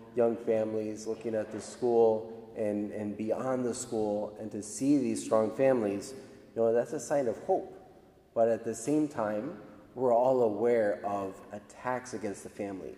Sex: male